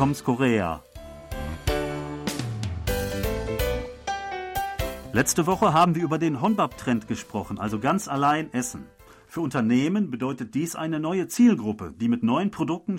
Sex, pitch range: male, 125-195 Hz